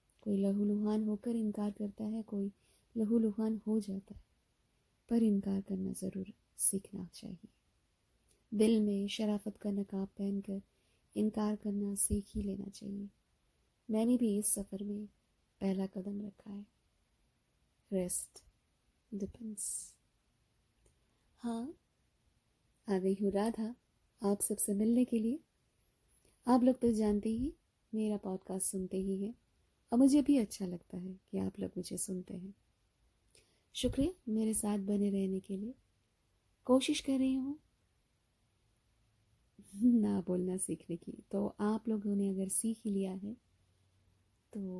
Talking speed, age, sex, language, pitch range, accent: 130 wpm, 20-39, female, Hindi, 190-220 Hz, native